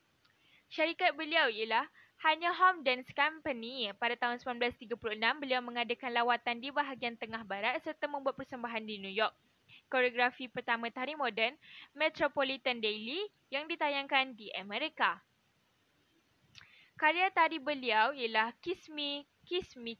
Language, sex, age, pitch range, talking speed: Malay, female, 10-29, 225-290 Hz, 125 wpm